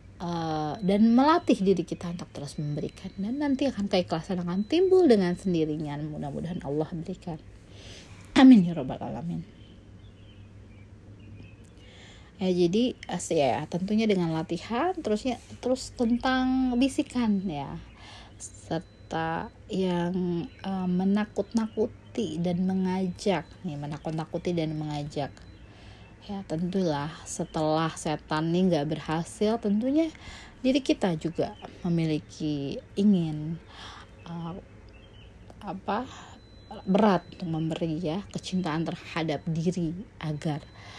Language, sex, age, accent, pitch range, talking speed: Indonesian, female, 30-49, native, 145-195 Hz, 100 wpm